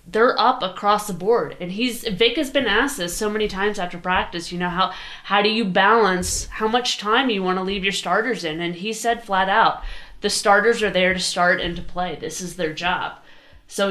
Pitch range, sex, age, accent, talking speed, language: 180-235 Hz, female, 20-39, American, 230 wpm, English